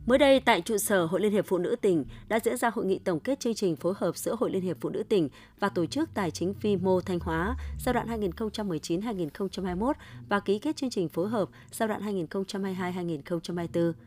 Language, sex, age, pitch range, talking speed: Vietnamese, female, 20-39, 170-210 Hz, 210 wpm